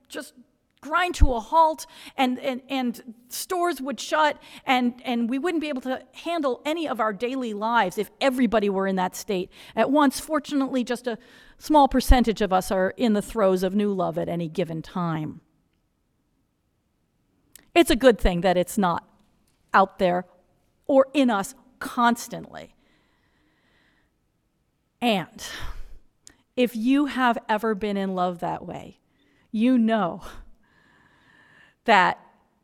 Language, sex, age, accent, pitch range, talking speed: English, female, 40-59, American, 210-275 Hz, 140 wpm